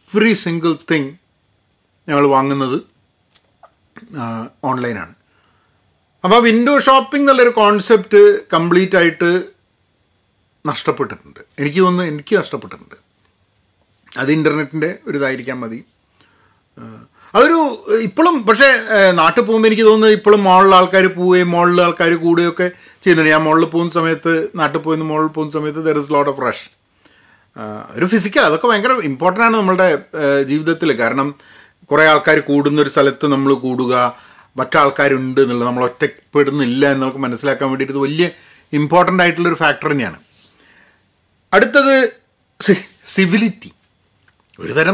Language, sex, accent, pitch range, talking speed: Malayalam, male, native, 135-185 Hz, 110 wpm